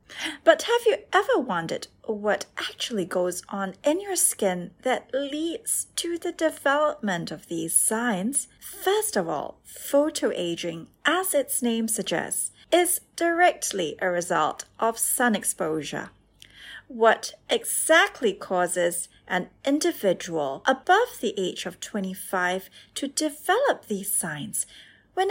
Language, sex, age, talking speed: English, female, 30-49, 120 wpm